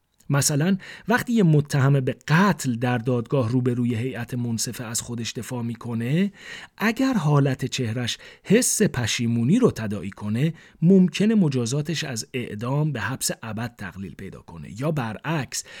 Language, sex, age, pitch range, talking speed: Persian, male, 40-59, 110-155 Hz, 135 wpm